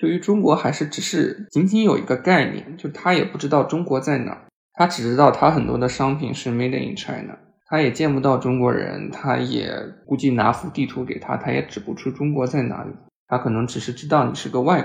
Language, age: Chinese, 20-39